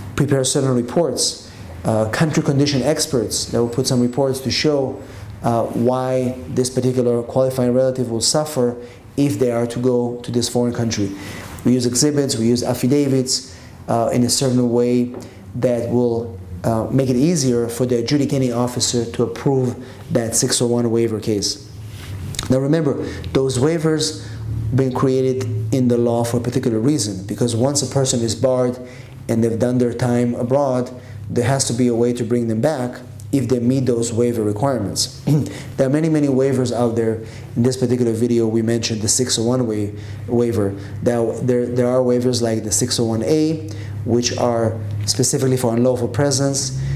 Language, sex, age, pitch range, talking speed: English, male, 30-49, 115-130 Hz, 165 wpm